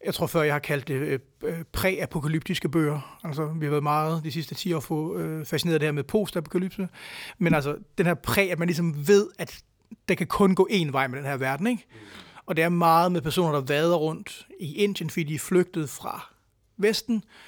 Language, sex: Danish, male